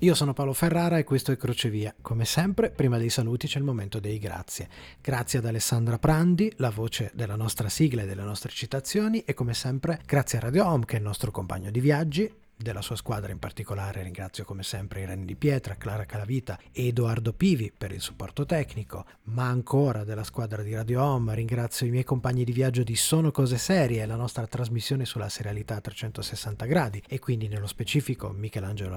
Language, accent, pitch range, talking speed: Italian, native, 110-140 Hz, 195 wpm